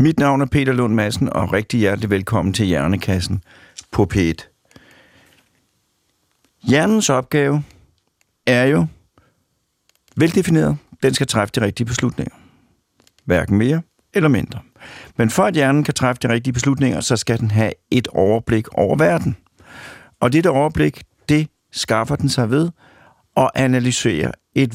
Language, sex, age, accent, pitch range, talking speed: Danish, male, 60-79, native, 105-140 Hz, 140 wpm